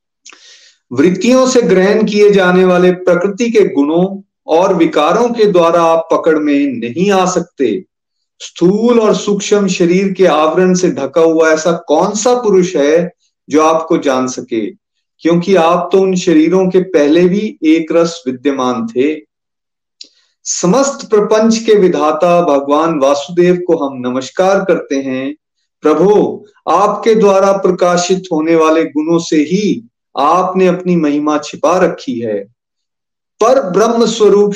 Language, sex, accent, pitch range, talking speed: Hindi, male, native, 165-205 Hz, 135 wpm